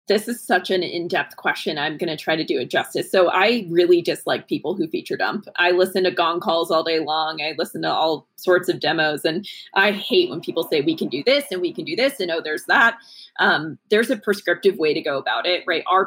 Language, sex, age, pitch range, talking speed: English, female, 20-39, 175-240 Hz, 250 wpm